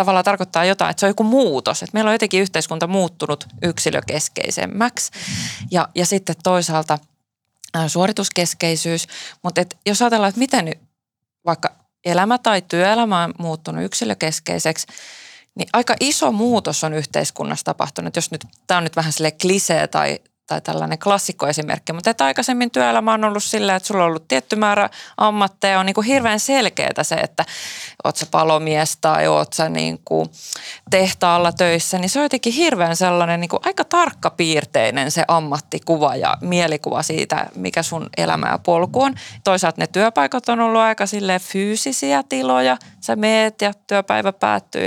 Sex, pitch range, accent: female, 160-215 Hz, native